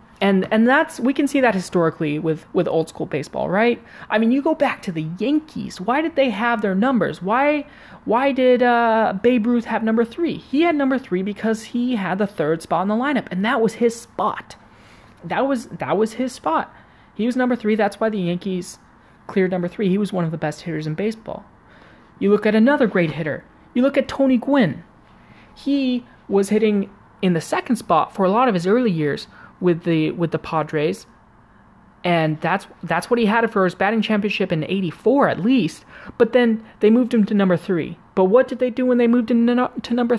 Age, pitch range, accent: 20-39, 170-240 Hz, American